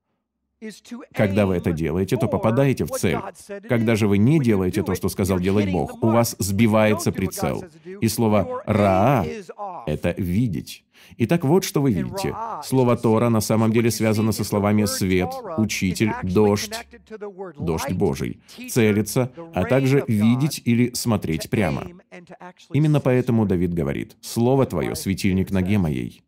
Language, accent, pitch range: Russian, native, 95-145 Hz